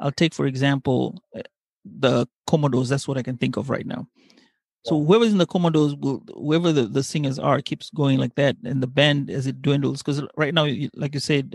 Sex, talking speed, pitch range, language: male, 210 wpm, 135-165 Hz, Swahili